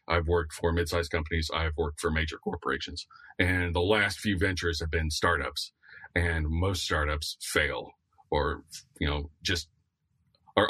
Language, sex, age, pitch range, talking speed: English, male, 30-49, 85-100 Hz, 150 wpm